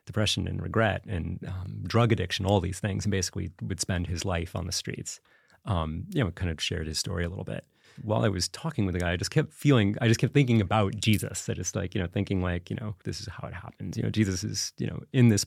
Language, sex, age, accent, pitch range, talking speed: English, male, 30-49, American, 90-115 Hz, 270 wpm